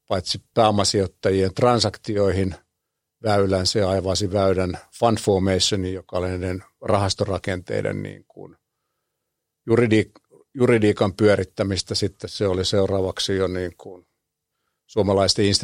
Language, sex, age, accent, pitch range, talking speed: Finnish, male, 50-69, native, 95-105 Hz, 90 wpm